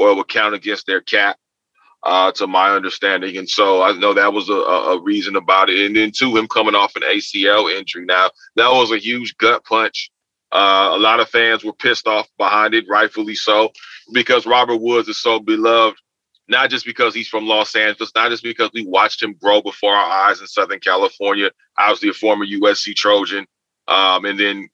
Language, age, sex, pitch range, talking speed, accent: English, 30-49, male, 100-165 Hz, 205 wpm, American